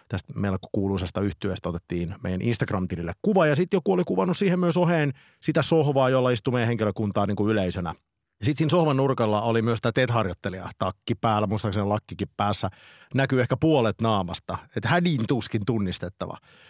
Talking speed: 160 wpm